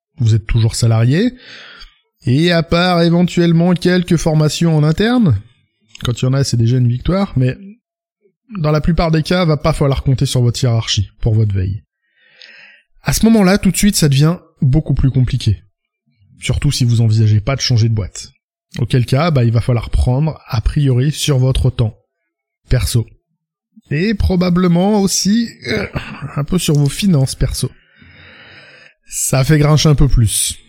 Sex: male